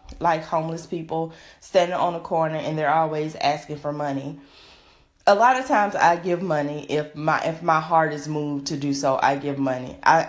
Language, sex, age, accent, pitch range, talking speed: English, female, 20-39, American, 160-195 Hz, 200 wpm